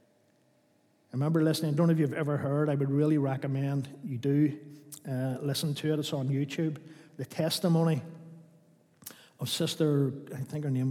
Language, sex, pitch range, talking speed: English, male, 130-150 Hz, 170 wpm